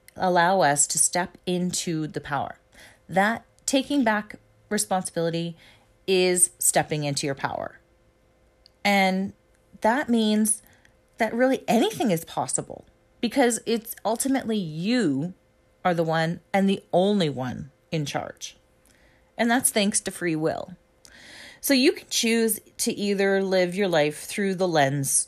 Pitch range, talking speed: 155-215 Hz, 130 wpm